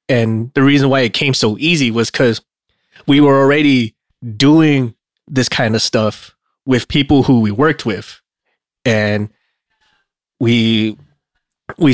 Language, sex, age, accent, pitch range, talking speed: English, male, 20-39, American, 115-135 Hz, 135 wpm